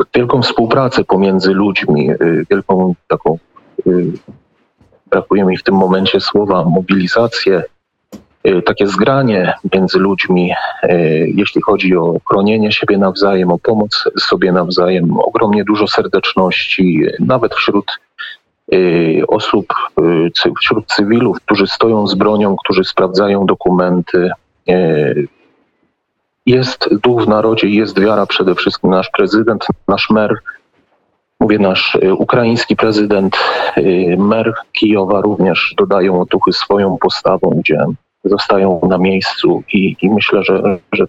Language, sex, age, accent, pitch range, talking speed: Polish, male, 40-59, native, 95-110 Hz, 110 wpm